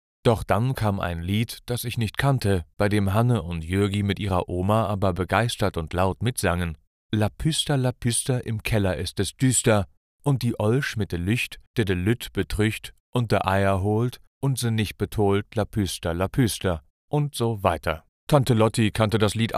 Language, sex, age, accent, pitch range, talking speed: German, male, 40-59, German, 95-125 Hz, 185 wpm